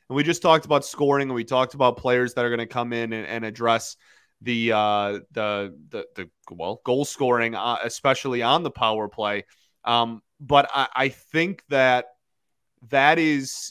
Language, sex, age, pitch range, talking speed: English, male, 30-49, 120-145 Hz, 185 wpm